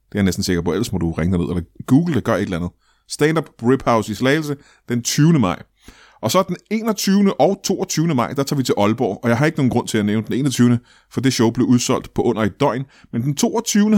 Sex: male